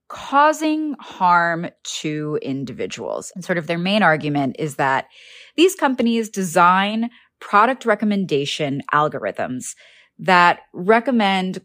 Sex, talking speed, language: female, 105 wpm, English